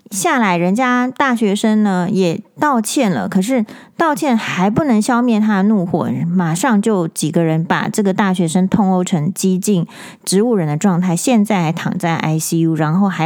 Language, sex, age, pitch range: Chinese, female, 30-49, 180-225 Hz